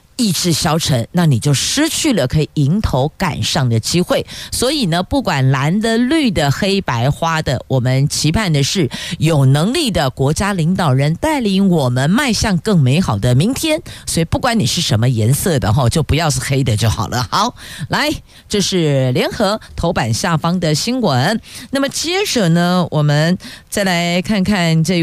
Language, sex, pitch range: Chinese, female, 135-195 Hz